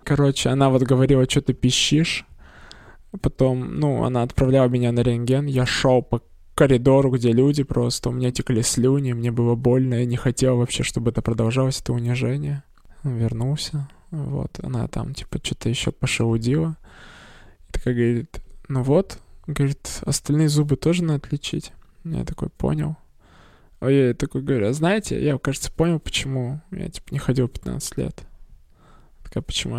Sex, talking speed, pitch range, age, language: male, 150 wpm, 125-150 Hz, 20-39, Russian